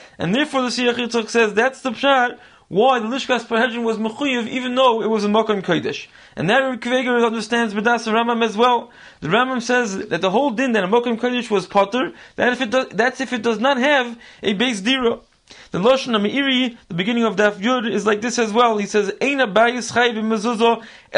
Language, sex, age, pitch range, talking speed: English, male, 20-39, 215-260 Hz, 205 wpm